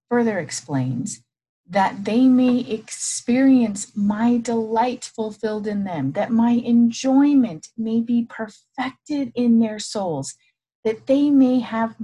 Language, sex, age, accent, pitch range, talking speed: English, female, 40-59, American, 175-240 Hz, 120 wpm